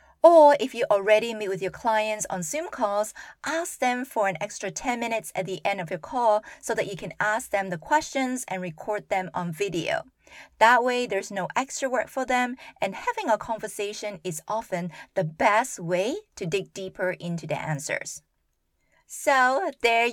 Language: English